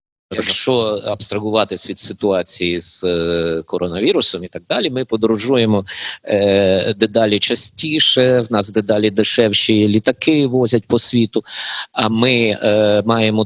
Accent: native